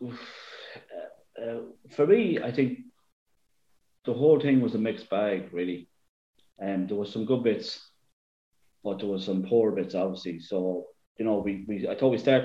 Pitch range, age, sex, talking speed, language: 95-115 Hz, 30-49, male, 185 wpm, English